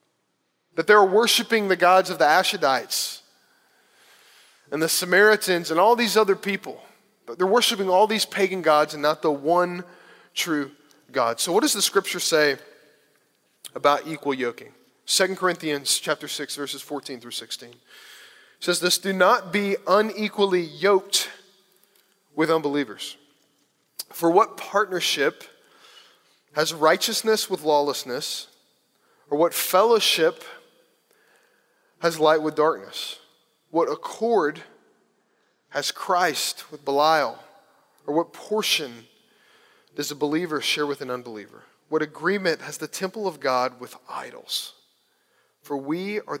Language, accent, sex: English, American, male